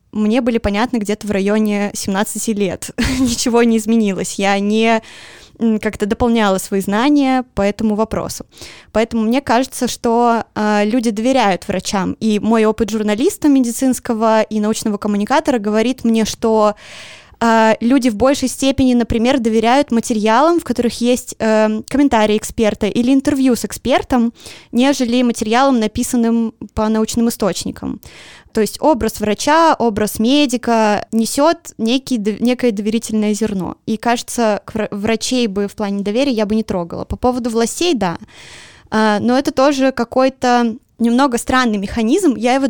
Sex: female